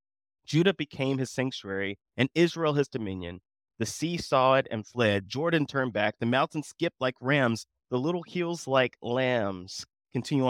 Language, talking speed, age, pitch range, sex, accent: English, 160 wpm, 30-49, 110-145 Hz, male, American